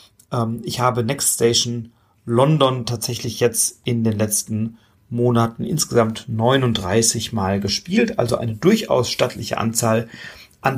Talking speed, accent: 115 wpm, German